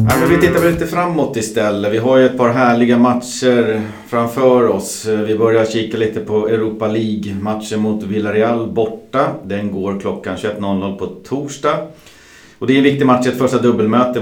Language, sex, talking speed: Swedish, male, 170 wpm